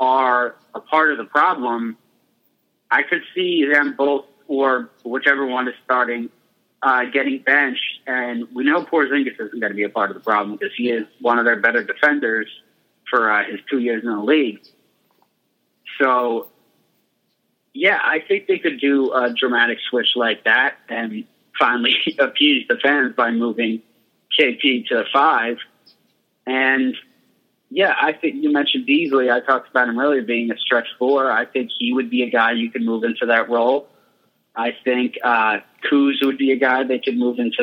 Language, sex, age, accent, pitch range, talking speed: English, male, 30-49, American, 120-155 Hz, 175 wpm